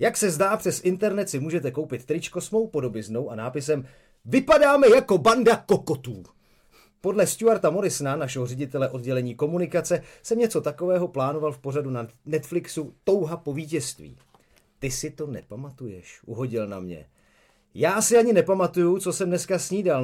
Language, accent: Czech, native